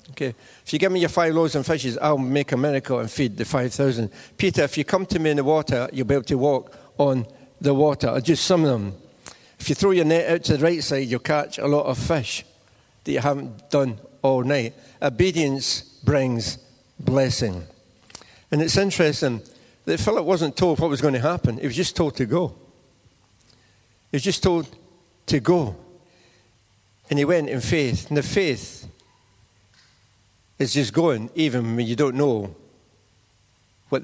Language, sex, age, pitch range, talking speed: English, male, 60-79, 120-155 Hz, 185 wpm